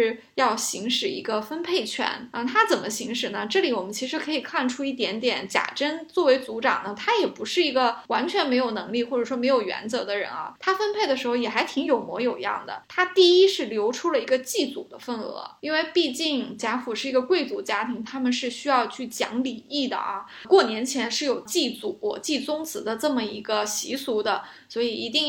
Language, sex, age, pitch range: Chinese, female, 20-39, 230-315 Hz